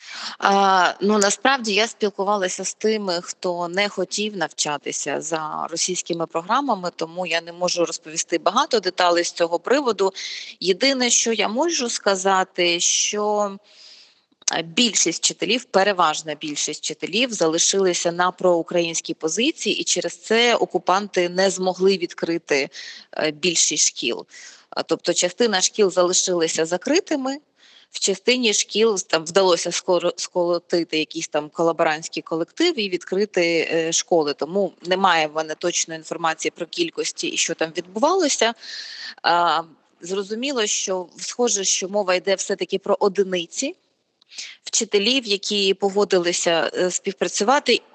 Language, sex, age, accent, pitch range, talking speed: Ukrainian, female, 20-39, native, 170-215 Hz, 115 wpm